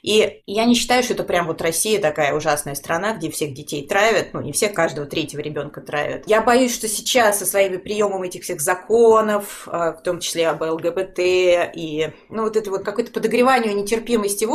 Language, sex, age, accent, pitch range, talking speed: Russian, female, 30-49, native, 165-215 Hz, 195 wpm